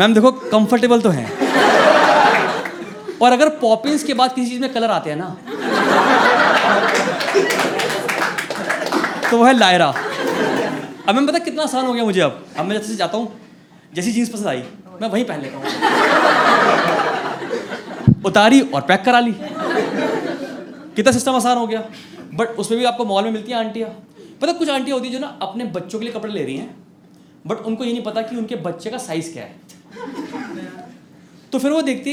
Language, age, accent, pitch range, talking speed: Hindi, 20-39, native, 205-260 Hz, 175 wpm